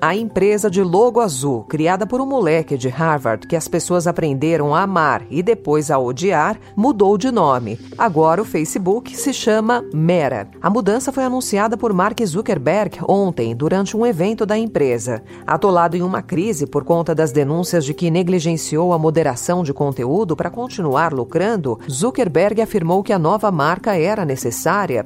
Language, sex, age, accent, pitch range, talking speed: Portuguese, female, 40-59, Brazilian, 150-210 Hz, 165 wpm